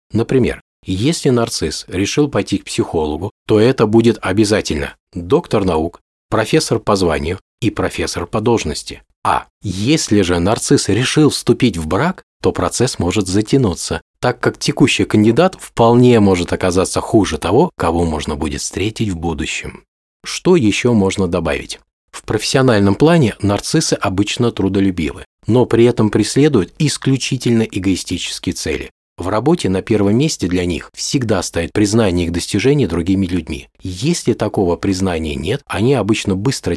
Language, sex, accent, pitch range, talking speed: Russian, male, native, 90-125 Hz, 140 wpm